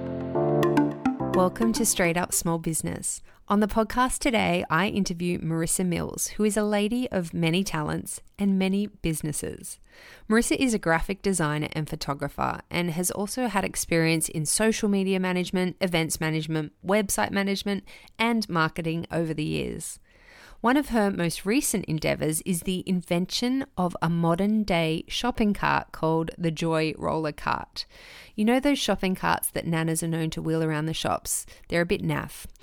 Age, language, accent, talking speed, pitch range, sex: 30-49, English, Australian, 160 wpm, 160-205 Hz, female